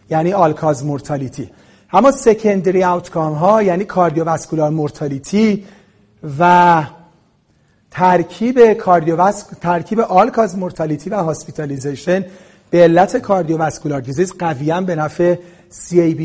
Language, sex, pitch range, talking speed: Persian, male, 155-200 Hz, 90 wpm